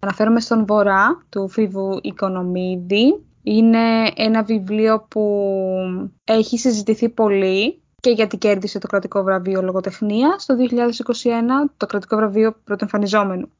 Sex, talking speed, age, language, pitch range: female, 120 wpm, 20-39, Greek, 205-265 Hz